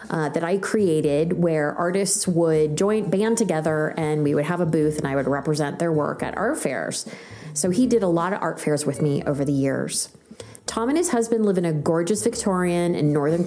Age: 30-49